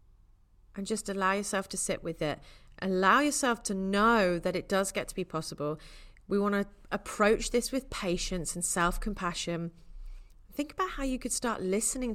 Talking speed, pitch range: 175 wpm, 155-210 Hz